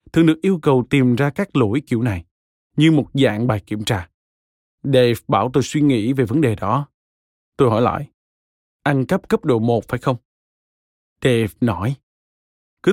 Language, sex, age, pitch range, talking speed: Vietnamese, male, 20-39, 110-150 Hz, 175 wpm